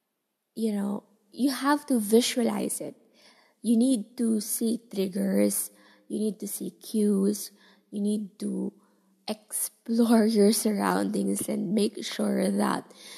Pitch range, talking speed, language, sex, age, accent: 200-245 Hz, 125 wpm, English, female, 20-39, Filipino